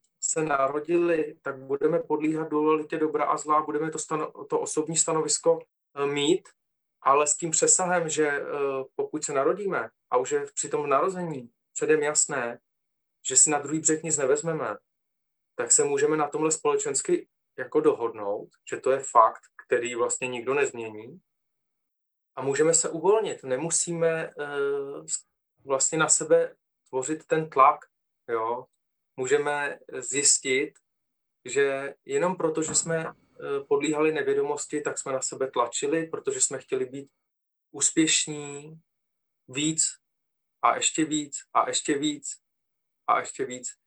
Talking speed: 135 wpm